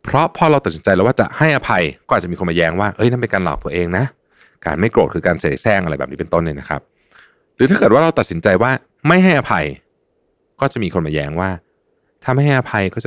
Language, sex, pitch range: Thai, male, 80-115 Hz